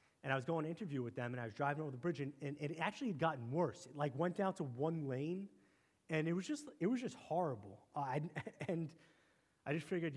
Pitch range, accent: 130-165 Hz, American